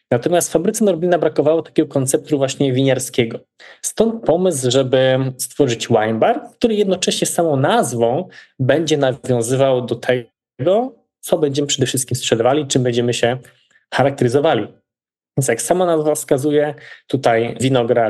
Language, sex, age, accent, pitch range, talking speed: Polish, male, 20-39, native, 120-155 Hz, 125 wpm